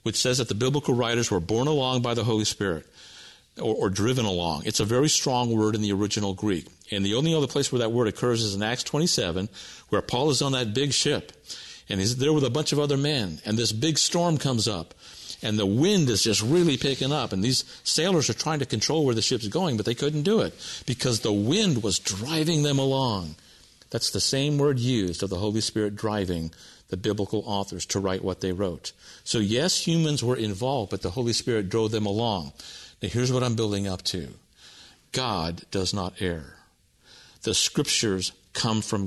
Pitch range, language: 100-135 Hz, English